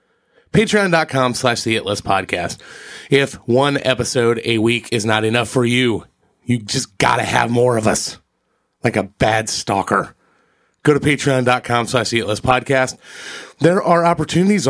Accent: American